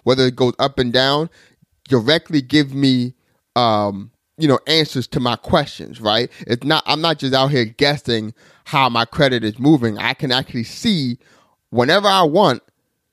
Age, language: 30-49, English